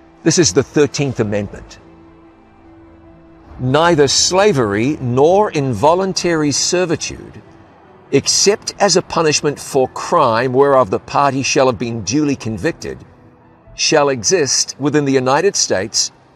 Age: 50-69